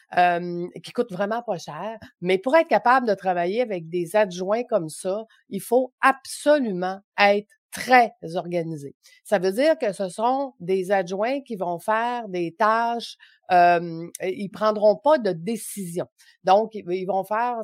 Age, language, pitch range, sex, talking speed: 30-49, French, 180-235 Hz, female, 155 wpm